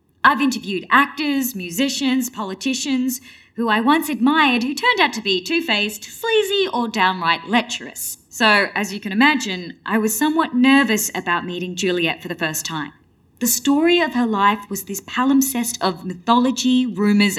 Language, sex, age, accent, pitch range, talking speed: English, female, 20-39, Australian, 200-270 Hz, 160 wpm